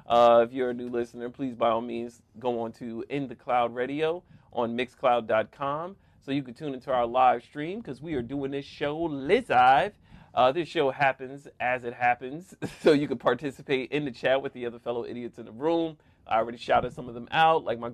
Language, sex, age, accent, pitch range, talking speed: English, male, 30-49, American, 120-145 Hz, 215 wpm